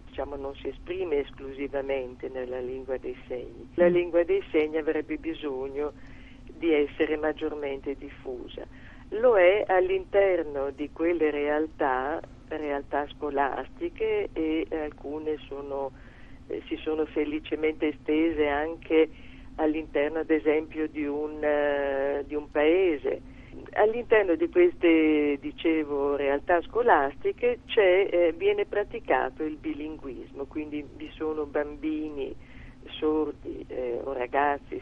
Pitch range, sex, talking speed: 140-165 Hz, female, 110 wpm